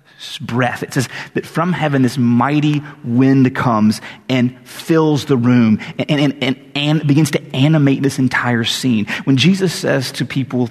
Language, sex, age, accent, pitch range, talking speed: English, male, 30-49, American, 115-145 Hz, 170 wpm